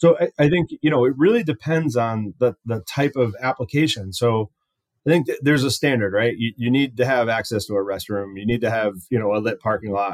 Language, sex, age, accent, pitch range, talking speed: English, male, 30-49, American, 105-130 Hz, 250 wpm